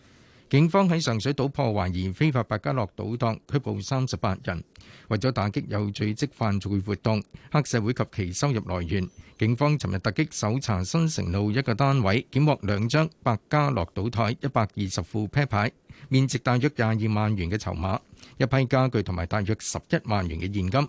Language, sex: Chinese, male